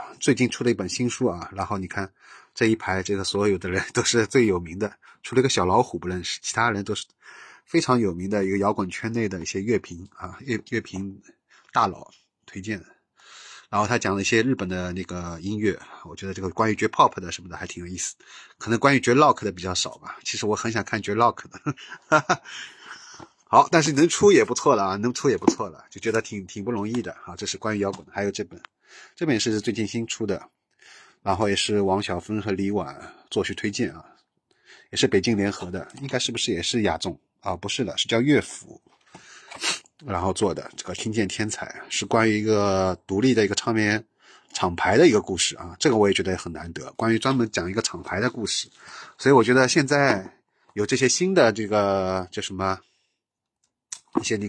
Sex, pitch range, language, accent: male, 95-115 Hz, Chinese, native